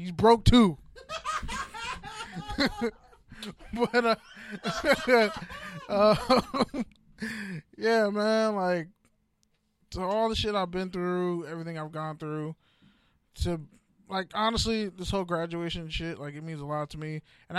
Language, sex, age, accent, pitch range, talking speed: English, male, 20-39, American, 140-205 Hz, 120 wpm